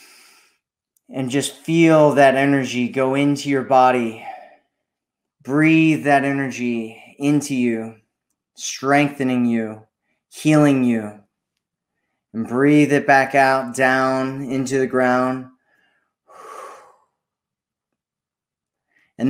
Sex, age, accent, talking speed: male, 20-39, American, 85 wpm